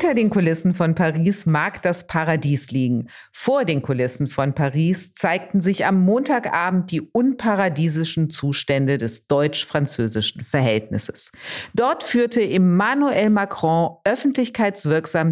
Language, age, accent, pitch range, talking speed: German, 50-69, German, 145-200 Hz, 115 wpm